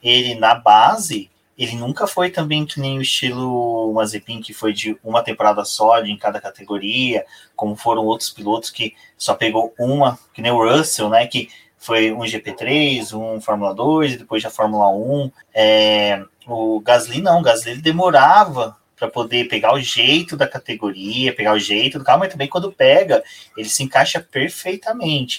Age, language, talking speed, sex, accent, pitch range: 20-39, Portuguese, 170 wpm, male, Brazilian, 110-140 Hz